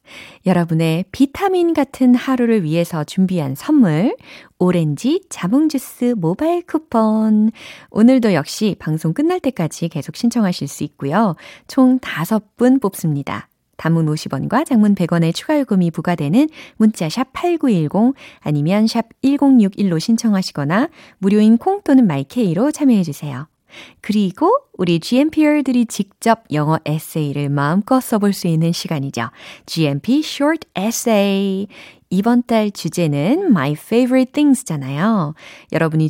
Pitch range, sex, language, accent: 160-255 Hz, female, Korean, native